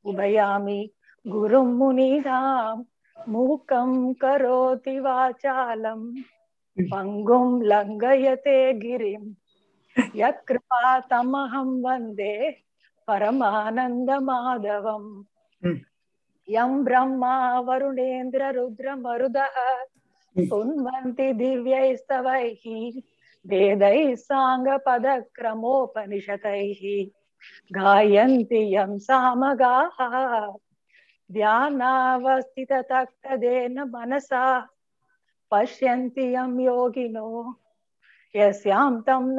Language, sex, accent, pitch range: Tamil, female, native, 215-265 Hz